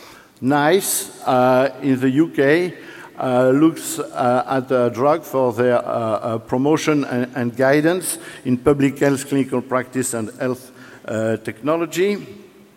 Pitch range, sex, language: 125-150 Hz, male, English